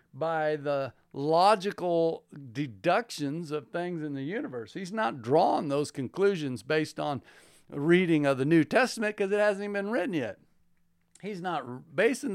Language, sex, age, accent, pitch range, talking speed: English, male, 50-69, American, 135-175 Hz, 155 wpm